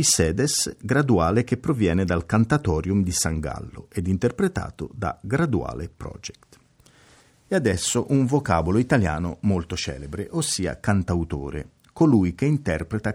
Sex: male